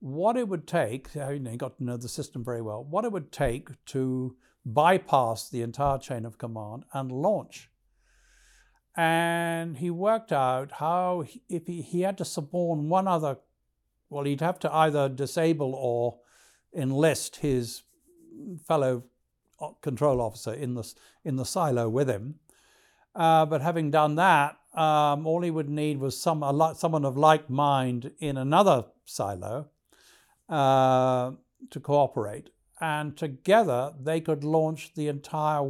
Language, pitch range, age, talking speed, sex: English, 130-170 Hz, 60-79, 150 wpm, male